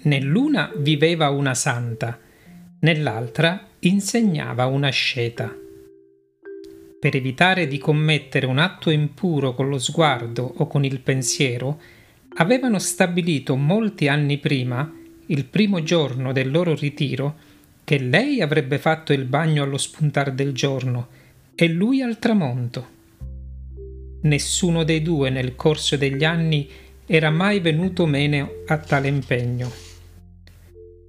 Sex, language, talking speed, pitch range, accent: male, Italian, 120 wpm, 125-175 Hz, native